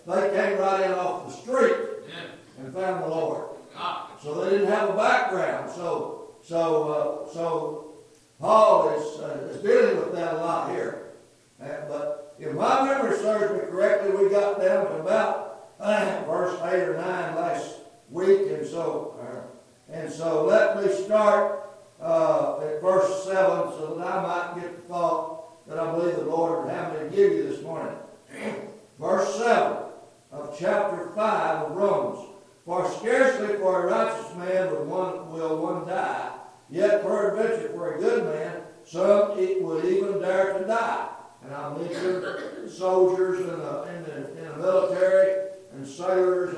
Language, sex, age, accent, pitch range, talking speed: English, male, 60-79, American, 170-205 Hz, 160 wpm